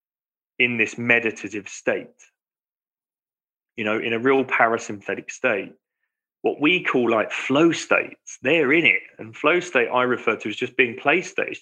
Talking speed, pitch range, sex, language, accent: 165 wpm, 105-135 Hz, male, English, British